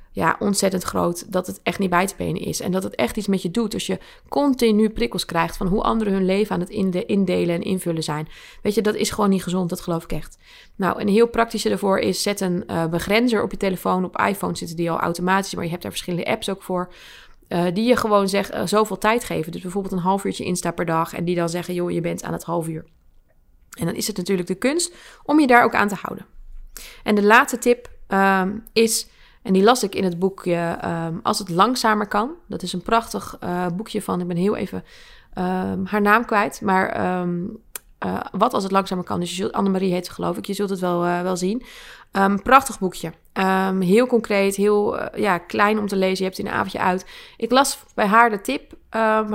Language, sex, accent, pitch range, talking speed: Dutch, female, Dutch, 180-220 Hz, 240 wpm